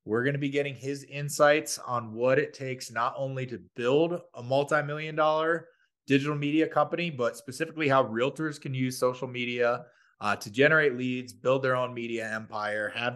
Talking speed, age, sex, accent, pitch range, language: 180 wpm, 20-39, male, American, 110-140 Hz, English